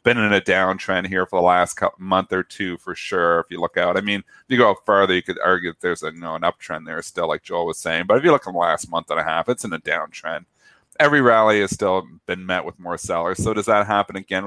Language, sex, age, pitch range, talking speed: English, male, 30-49, 90-115 Hz, 280 wpm